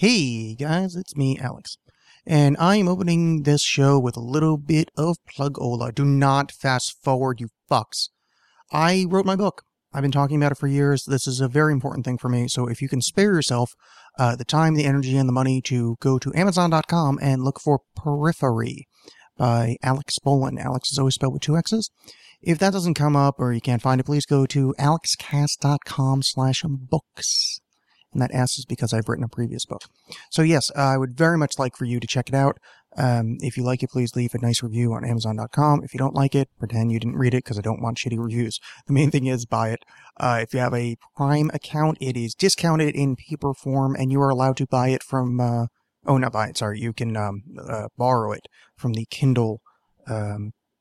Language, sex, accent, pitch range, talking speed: English, male, American, 120-145 Hz, 215 wpm